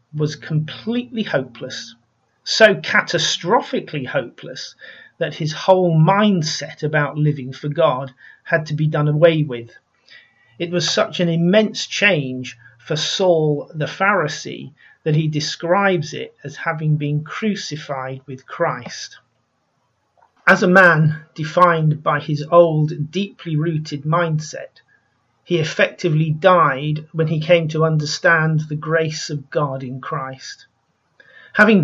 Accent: British